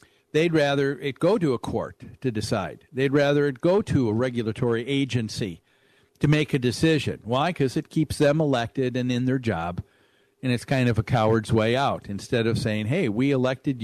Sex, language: male, English